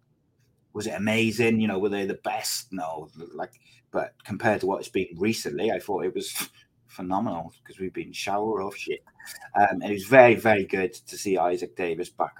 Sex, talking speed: male, 200 wpm